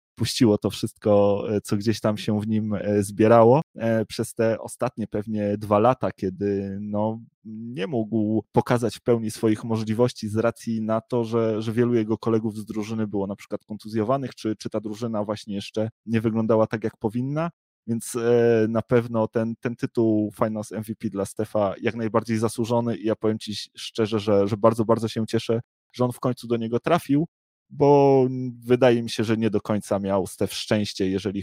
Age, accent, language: 20-39, native, Polish